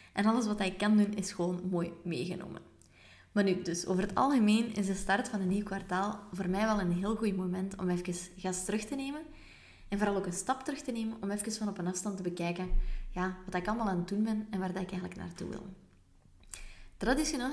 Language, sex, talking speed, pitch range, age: Dutch, female, 230 wpm, 185-220 Hz, 20-39